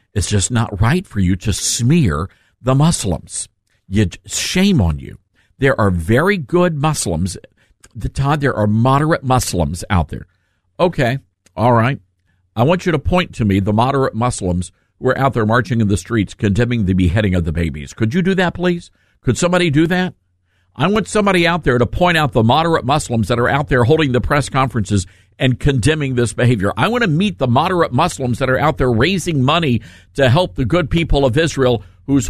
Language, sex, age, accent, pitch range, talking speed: English, male, 50-69, American, 100-150 Hz, 195 wpm